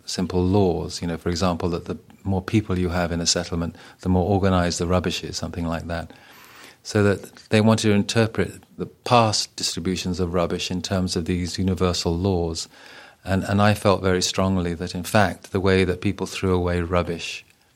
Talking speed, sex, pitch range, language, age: 195 wpm, male, 90-95 Hz, English, 40-59